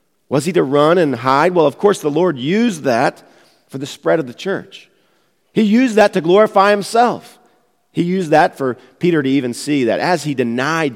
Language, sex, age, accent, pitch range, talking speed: English, male, 40-59, American, 110-150 Hz, 205 wpm